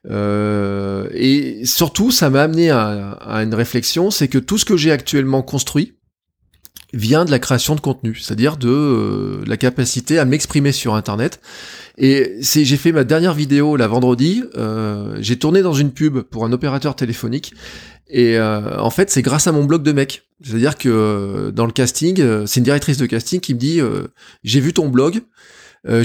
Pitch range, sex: 115-150 Hz, male